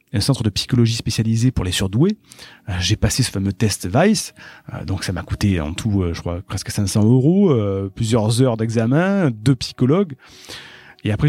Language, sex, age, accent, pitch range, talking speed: French, male, 40-59, French, 105-150 Hz, 170 wpm